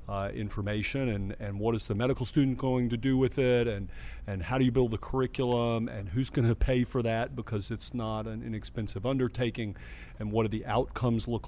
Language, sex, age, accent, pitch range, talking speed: English, male, 40-59, American, 110-130 Hz, 215 wpm